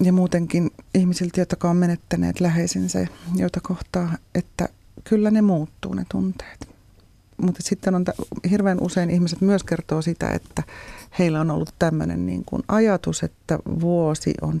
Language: Finnish